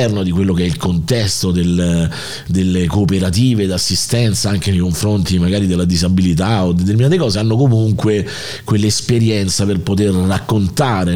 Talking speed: 140 wpm